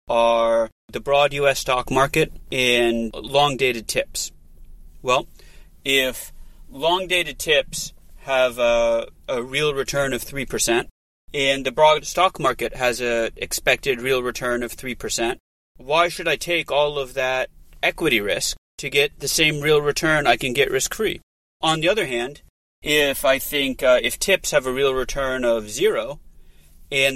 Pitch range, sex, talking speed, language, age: 115-150 Hz, male, 155 wpm, English, 30-49